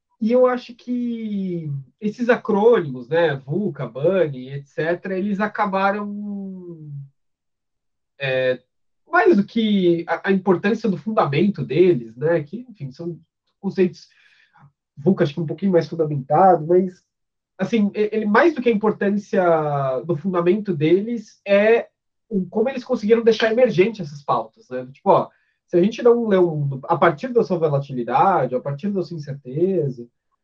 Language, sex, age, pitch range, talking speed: Portuguese, male, 20-39, 160-215 Hz, 140 wpm